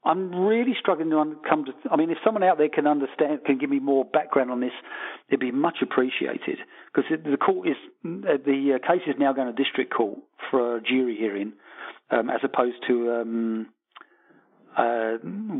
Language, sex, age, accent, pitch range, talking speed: English, male, 50-69, British, 125-155 Hz, 190 wpm